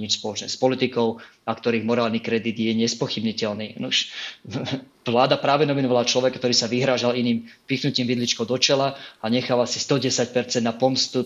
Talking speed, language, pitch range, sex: 155 wpm, Slovak, 115-130 Hz, male